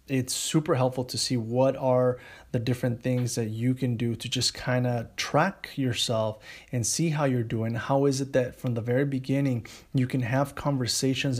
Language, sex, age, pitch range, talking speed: English, male, 30-49, 120-135 Hz, 195 wpm